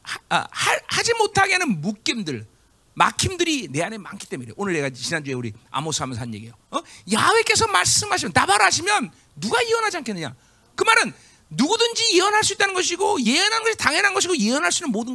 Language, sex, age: Korean, male, 40-59